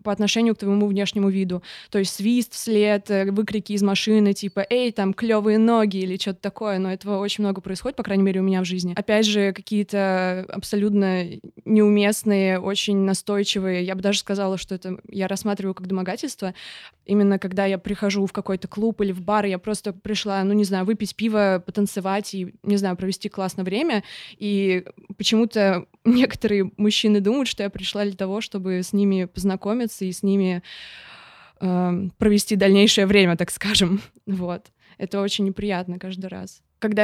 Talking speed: 170 wpm